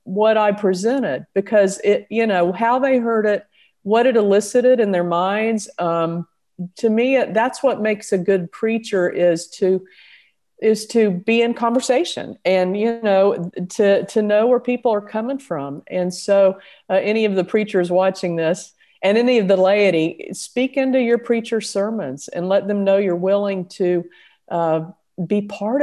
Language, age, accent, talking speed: English, 50-69, American, 170 wpm